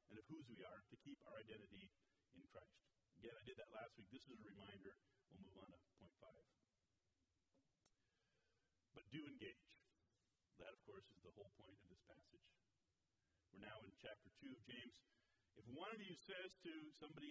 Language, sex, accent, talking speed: English, male, American, 185 wpm